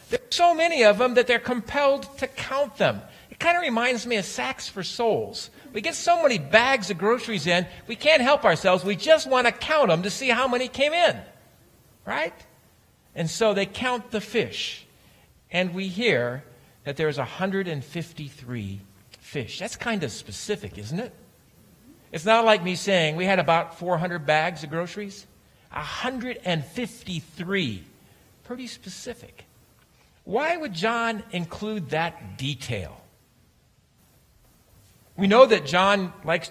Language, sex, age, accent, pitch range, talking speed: English, male, 50-69, American, 160-230 Hz, 150 wpm